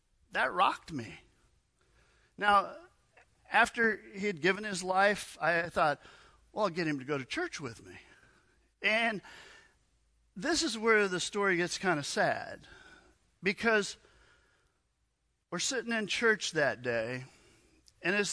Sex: male